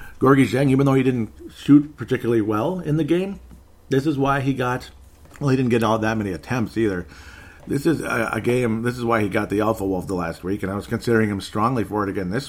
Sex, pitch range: male, 95-130 Hz